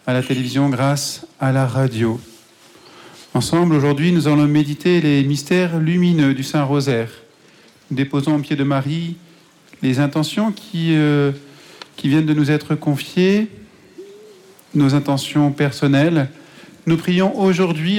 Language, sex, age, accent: French, male, 40-59, French